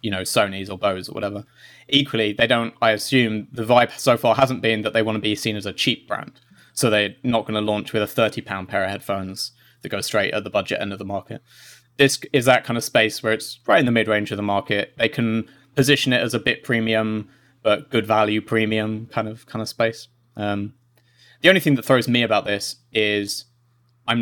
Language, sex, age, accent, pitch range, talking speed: English, male, 20-39, British, 105-125 Hz, 230 wpm